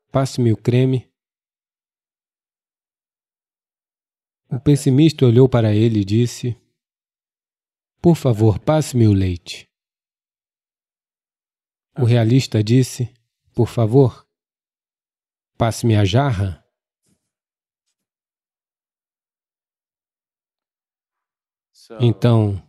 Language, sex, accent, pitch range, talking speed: English, male, Brazilian, 110-135 Hz, 65 wpm